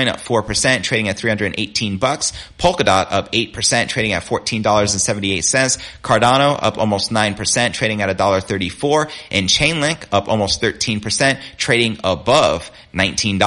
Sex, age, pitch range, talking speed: male, 30-49, 95-125 Hz, 180 wpm